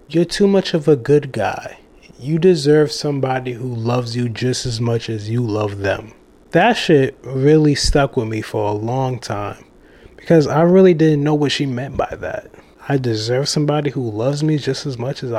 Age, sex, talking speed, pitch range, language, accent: 20-39, male, 195 wpm, 130-185 Hz, English, American